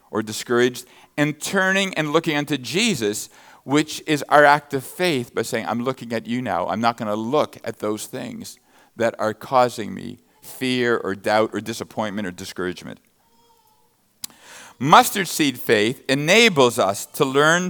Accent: American